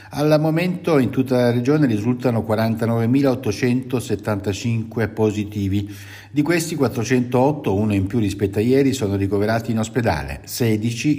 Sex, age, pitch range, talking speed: male, 60-79, 100-135 Hz, 125 wpm